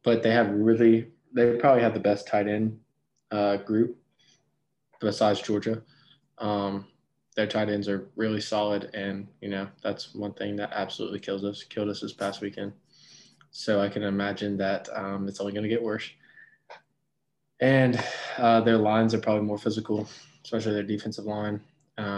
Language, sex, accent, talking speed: English, male, American, 170 wpm